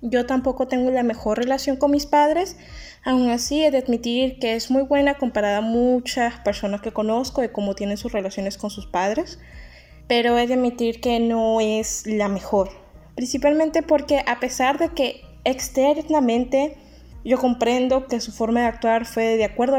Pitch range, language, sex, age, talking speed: 220-270 Hz, Spanish, female, 10-29, 175 wpm